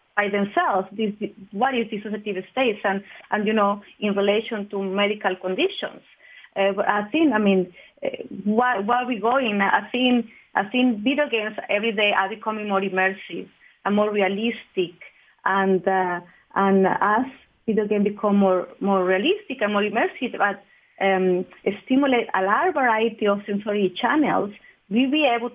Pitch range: 195-240 Hz